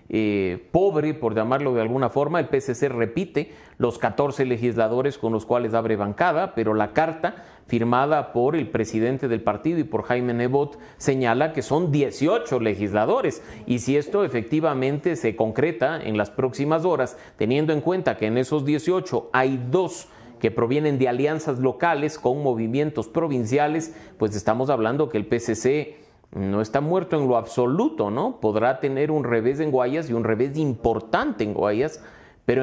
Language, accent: English, Mexican